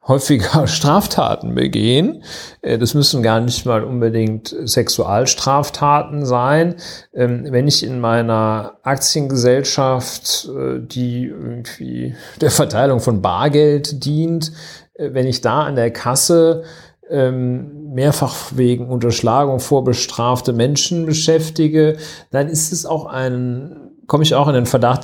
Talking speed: 115 wpm